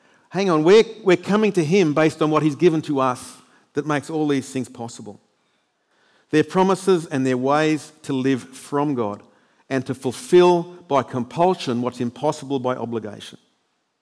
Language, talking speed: English, 165 wpm